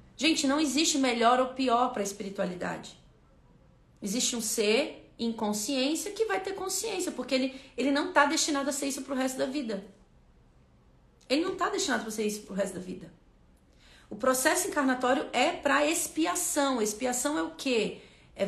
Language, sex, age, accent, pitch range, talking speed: Portuguese, female, 40-59, Brazilian, 215-285 Hz, 180 wpm